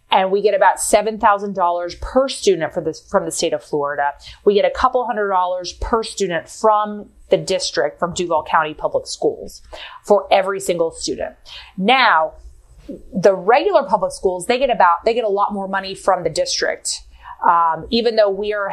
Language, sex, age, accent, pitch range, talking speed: English, female, 30-49, American, 180-220 Hz, 185 wpm